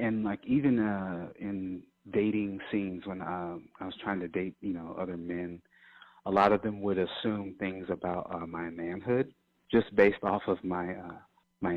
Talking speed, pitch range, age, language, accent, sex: 185 wpm, 95-120 Hz, 30-49, English, American, male